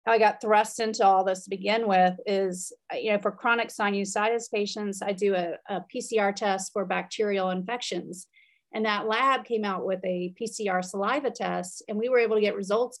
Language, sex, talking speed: English, female, 200 wpm